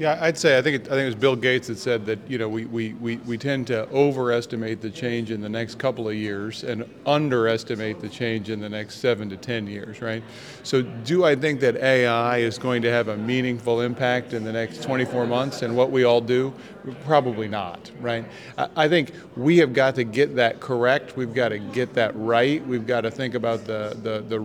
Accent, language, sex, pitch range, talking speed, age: American, English, male, 110-130 Hz, 230 wpm, 40-59